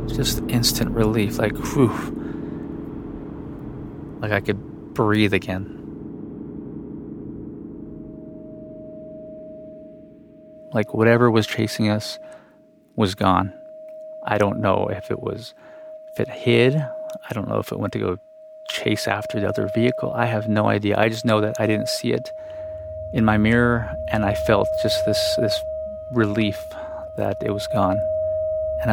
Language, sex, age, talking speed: English, male, 30-49, 135 wpm